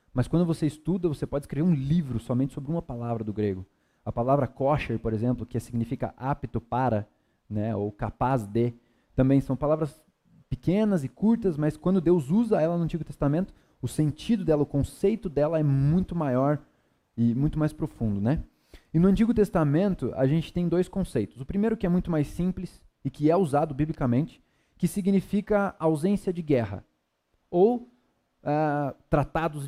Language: Portuguese